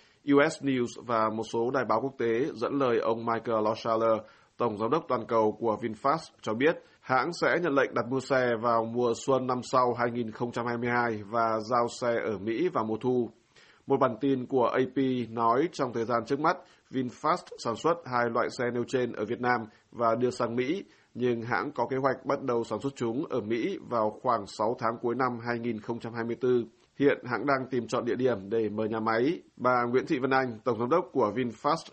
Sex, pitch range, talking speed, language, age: male, 115-130 Hz, 205 wpm, Vietnamese, 20-39